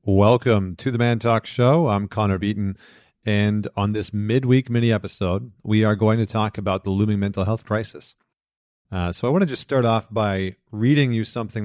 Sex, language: male, English